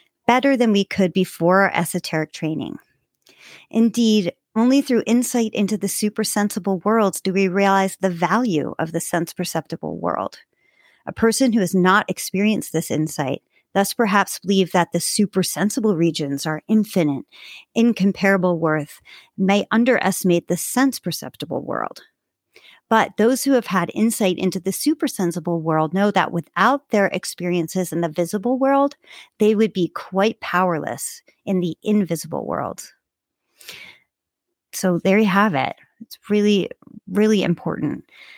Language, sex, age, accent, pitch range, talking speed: English, female, 40-59, American, 175-220 Hz, 140 wpm